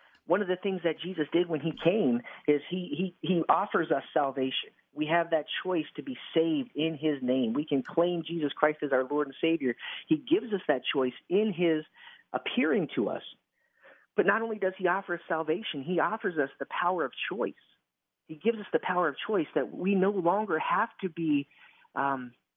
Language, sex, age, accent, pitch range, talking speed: English, male, 40-59, American, 140-190 Hz, 205 wpm